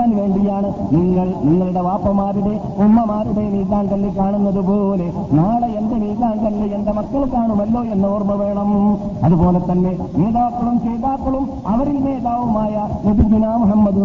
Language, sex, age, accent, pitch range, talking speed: Malayalam, male, 50-69, native, 195-225 Hz, 105 wpm